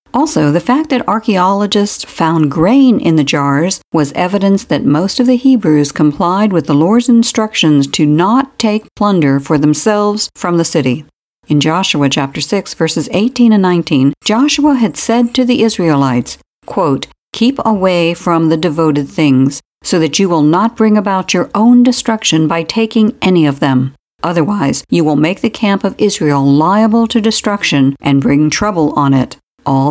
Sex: female